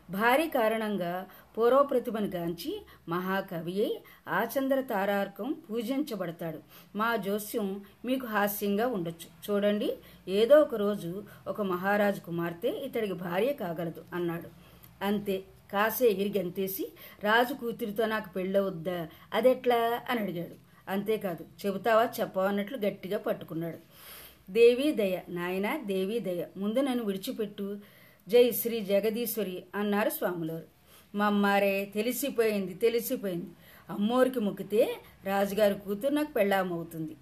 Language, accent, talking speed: Telugu, native, 95 wpm